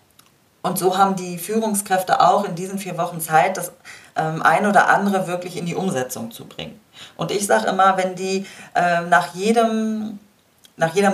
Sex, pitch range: female, 160-200 Hz